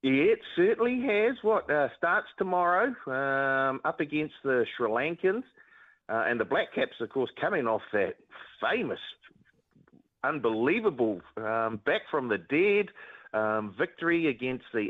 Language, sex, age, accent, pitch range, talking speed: English, male, 40-59, Australian, 95-130 Hz, 140 wpm